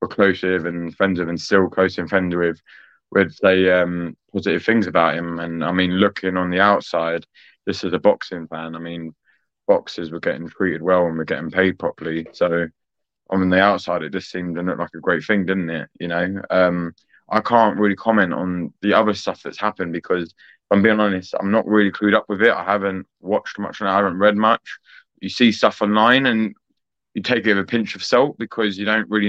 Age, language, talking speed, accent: 20-39, English, 220 wpm, British